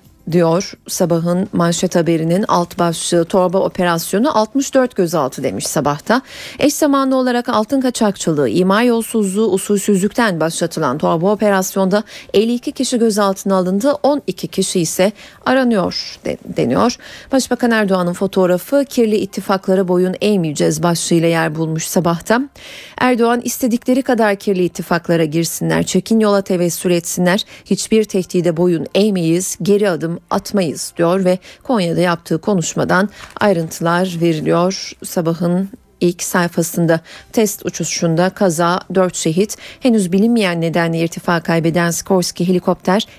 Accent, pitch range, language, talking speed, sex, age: native, 175-225 Hz, Turkish, 115 wpm, female, 40-59